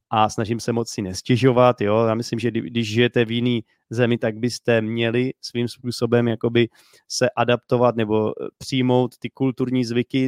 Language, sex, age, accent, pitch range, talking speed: Czech, male, 30-49, native, 115-135 Hz, 165 wpm